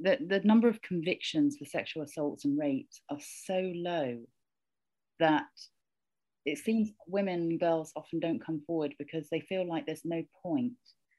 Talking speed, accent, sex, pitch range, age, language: 160 wpm, British, female, 150-245 Hz, 30-49, English